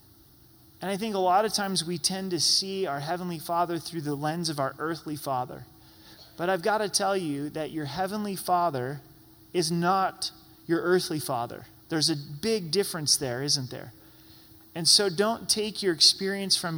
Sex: male